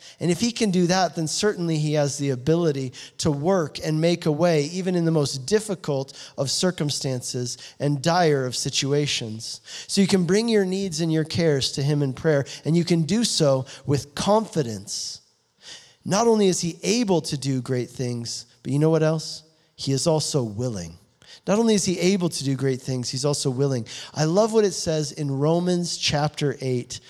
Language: English